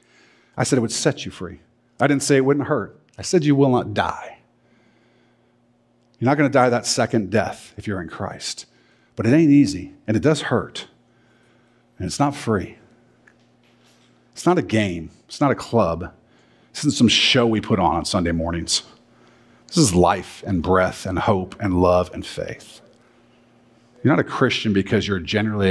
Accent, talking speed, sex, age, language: American, 185 wpm, male, 50-69, English